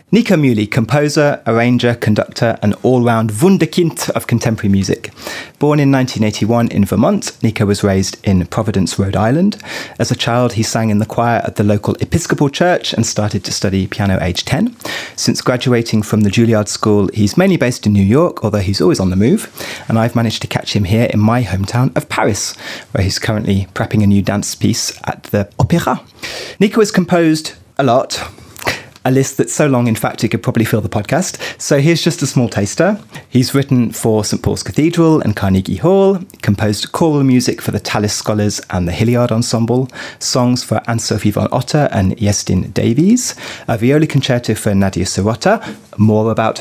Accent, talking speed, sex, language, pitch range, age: British, 185 wpm, male, English, 105-145 Hz, 30-49